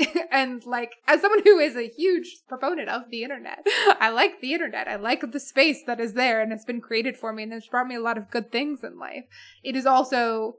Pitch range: 235-285 Hz